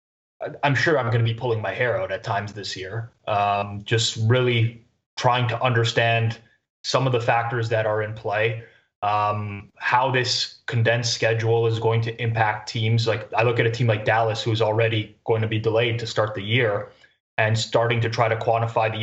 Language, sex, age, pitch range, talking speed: English, male, 20-39, 110-125 Hz, 200 wpm